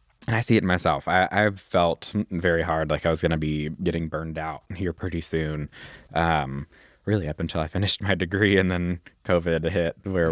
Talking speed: 205 wpm